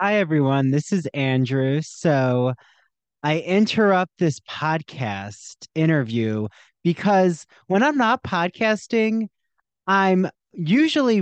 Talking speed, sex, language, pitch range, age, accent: 95 wpm, male, English, 140-200 Hz, 30-49, American